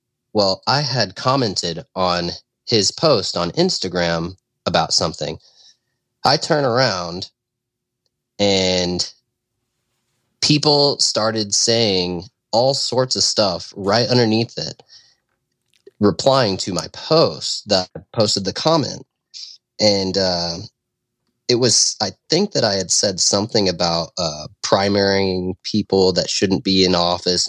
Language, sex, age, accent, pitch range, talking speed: English, male, 30-49, American, 95-125 Hz, 115 wpm